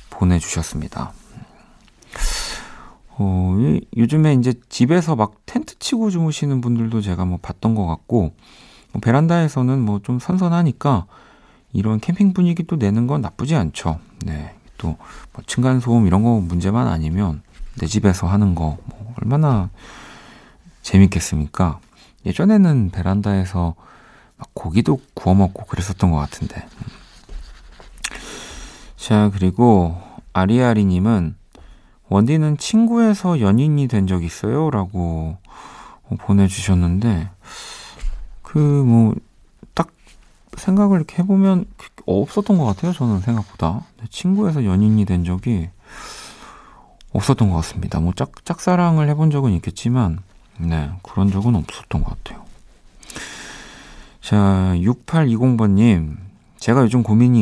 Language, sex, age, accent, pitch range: Korean, male, 40-59, native, 90-130 Hz